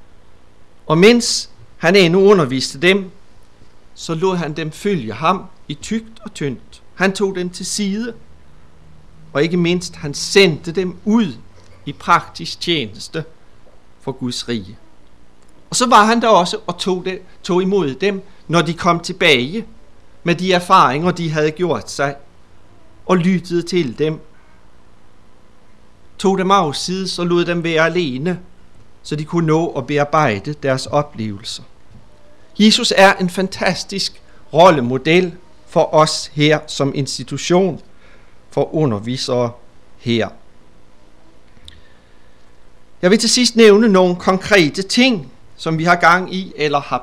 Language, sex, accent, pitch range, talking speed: Danish, male, native, 120-185 Hz, 130 wpm